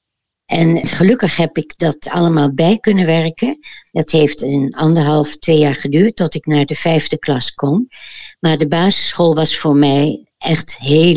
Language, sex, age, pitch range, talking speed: Dutch, female, 60-79, 145-170 Hz, 165 wpm